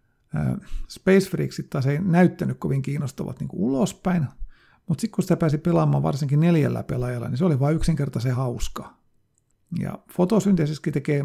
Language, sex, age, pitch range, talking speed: Finnish, male, 50-69, 135-175 Hz, 140 wpm